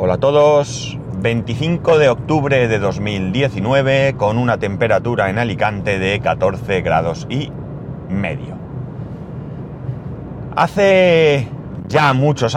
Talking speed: 100 wpm